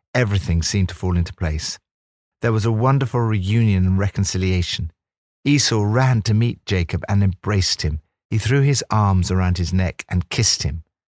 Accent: British